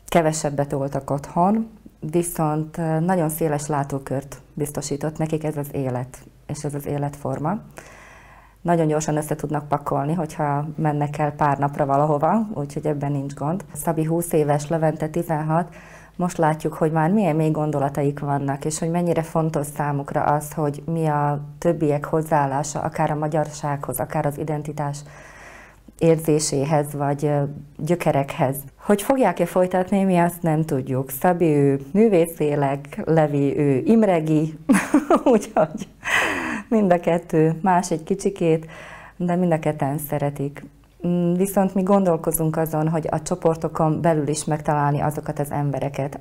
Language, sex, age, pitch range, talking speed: Hungarian, female, 30-49, 145-165 Hz, 130 wpm